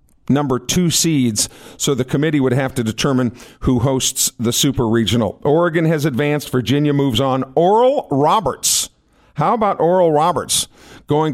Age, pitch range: 50-69, 120-145 Hz